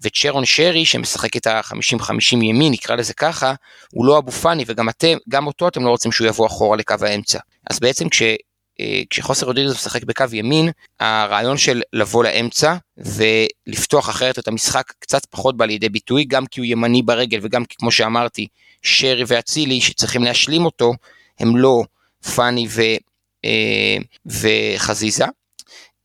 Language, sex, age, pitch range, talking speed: Hebrew, male, 30-49, 110-135 Hz, 150 wpm